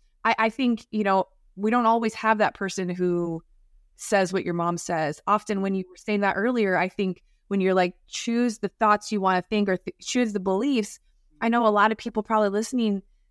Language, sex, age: English, female, 20-39